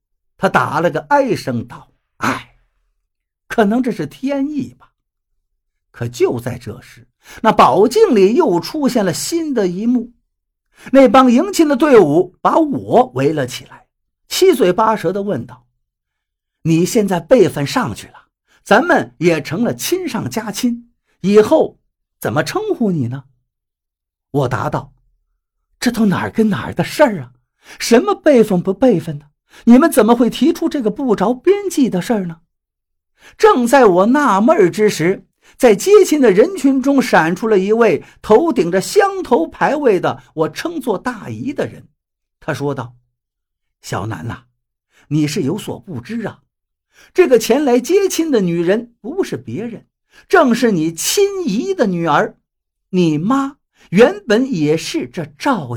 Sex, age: male, 50-69